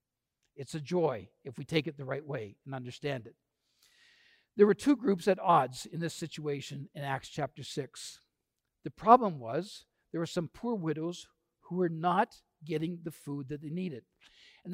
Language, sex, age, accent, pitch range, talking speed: English, male, 60-79, American, 150-200 Hz, 180 wpm